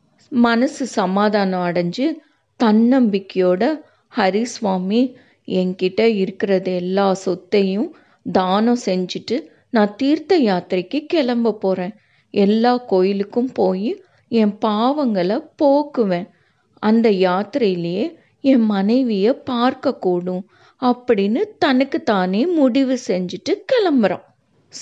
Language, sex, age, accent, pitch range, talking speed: Tamil, female, 30-49, native, 200-280 Hz, 80 wpm